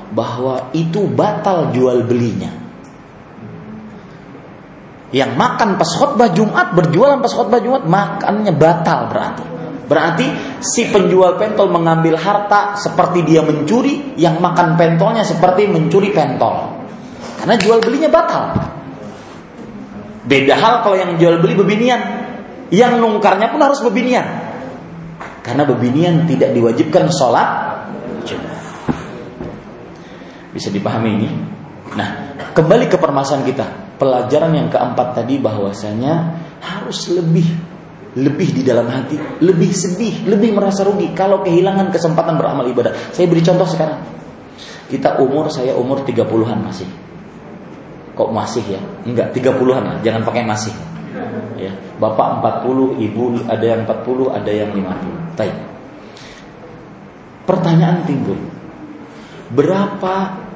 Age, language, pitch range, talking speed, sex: 30-49, Malay, 130-200 Hz, 115 wpm, male